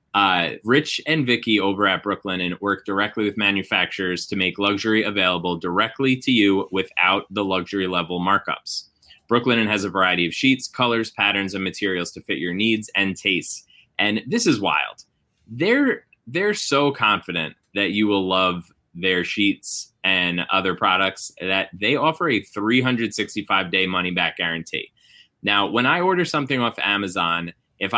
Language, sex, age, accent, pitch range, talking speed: English, male, 20-39, American, 90-110 Hz, 155 wpm